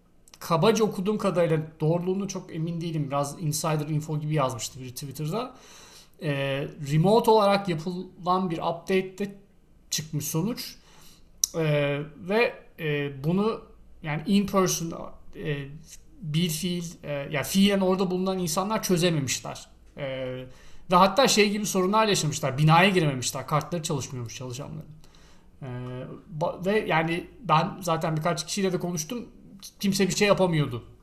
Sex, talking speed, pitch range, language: male, 130 wpm, 150-190 Hz, Turkish